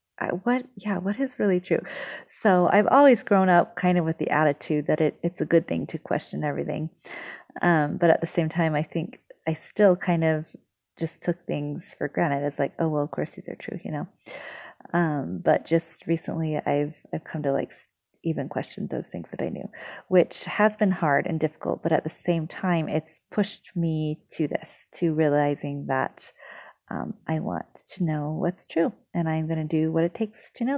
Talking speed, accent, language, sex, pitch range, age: 205 wpm, American, English, female, 160-190 Hz, 30-49